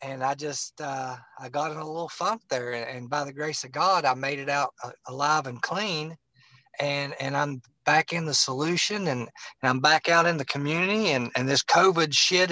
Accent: American